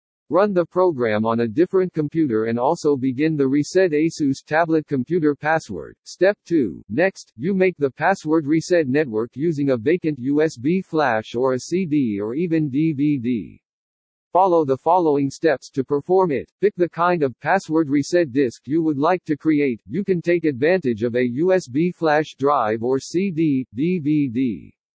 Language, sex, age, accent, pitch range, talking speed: English, male, 50-69, American, 135-175 Hz, 160 wpm